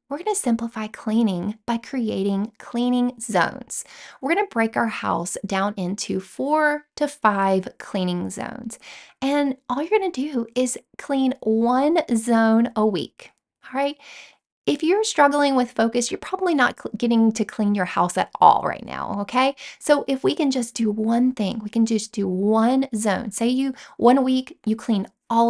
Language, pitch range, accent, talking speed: English, 210-260 Hz, American, 175 wpm